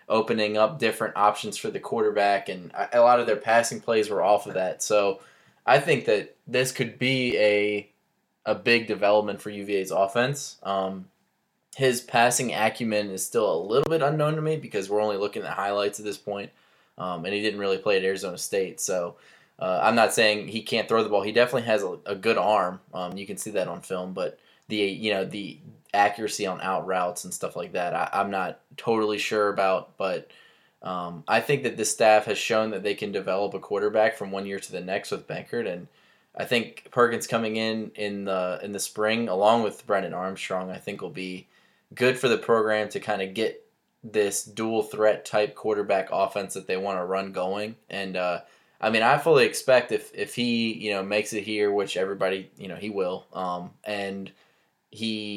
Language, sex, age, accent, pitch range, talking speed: English, male, 20-39, American, 95-115 Hz, 205 wpm